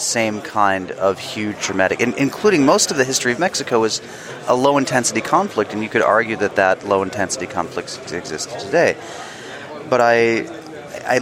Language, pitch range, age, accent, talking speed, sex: German, 100-125 Hz, 30-49, American, 160 wpm, male